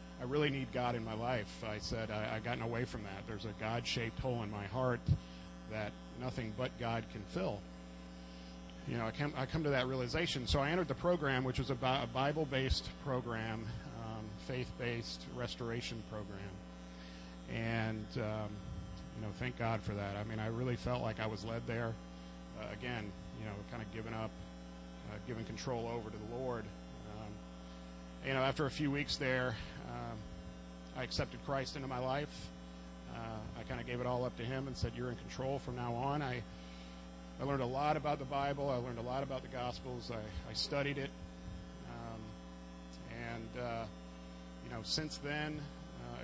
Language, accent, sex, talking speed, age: English, American, male, 190 wpm, 40-59